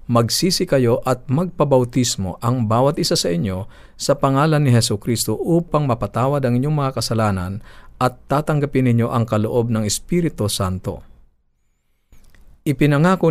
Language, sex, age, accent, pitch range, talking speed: Filipino, male, 50-69, native, 105-135 Hz, 130 wpm